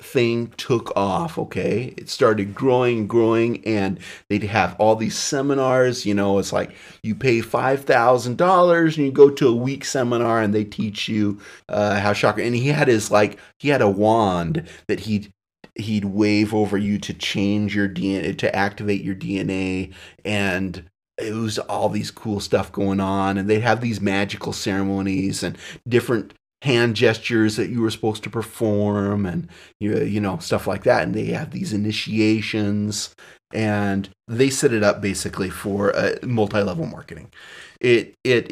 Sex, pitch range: male, 100-120 Hz